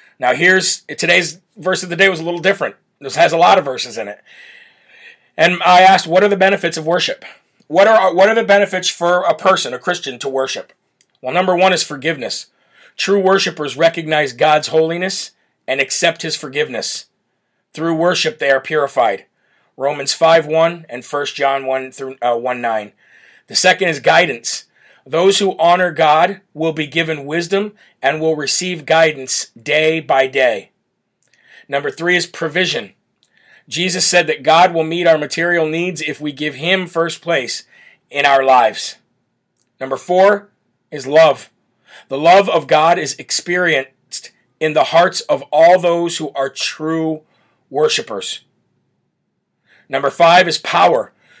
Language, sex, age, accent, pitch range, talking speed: English, male, 40-59, American, 150-185 Hz, 160 wpm